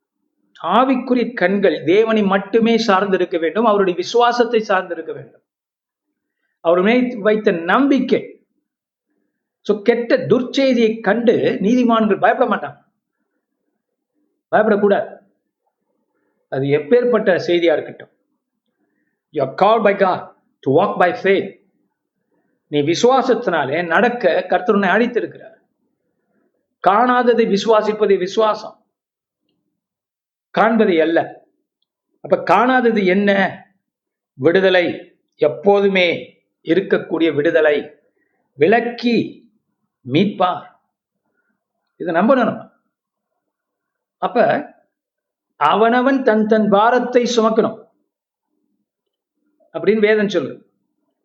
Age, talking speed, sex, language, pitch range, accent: 50-69, 60 wpm, male, Tamil, 195-240 Hz, native